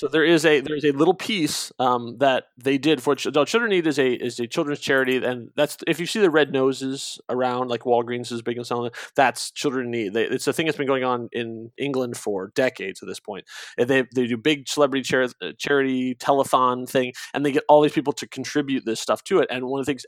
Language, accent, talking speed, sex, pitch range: English, American, 255 wpm, male, 120-145 Hz